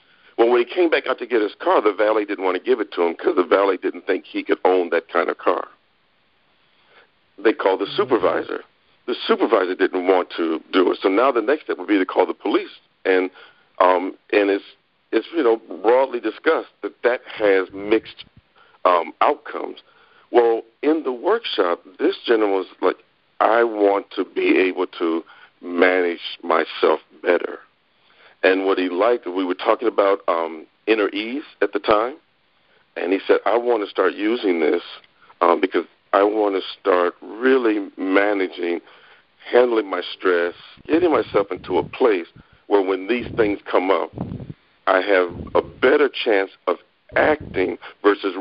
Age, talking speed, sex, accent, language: 50-69, 170 wpm, male, American, English